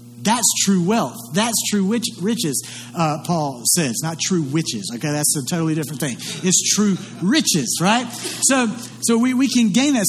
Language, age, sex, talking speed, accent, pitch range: English, 50-69, male, 170 wpm, American, 160-225 Hz